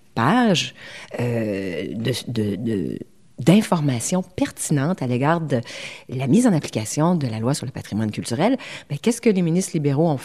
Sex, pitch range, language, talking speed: female, 140-215 Hz, French, 165 wpm